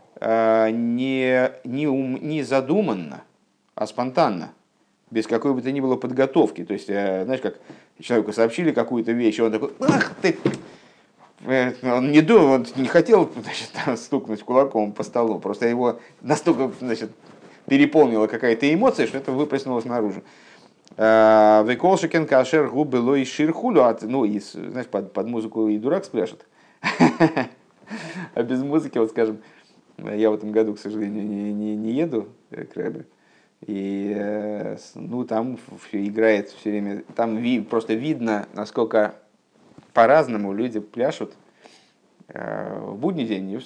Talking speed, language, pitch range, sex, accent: 125 wpm, Russian, 105-135 Hz, male, native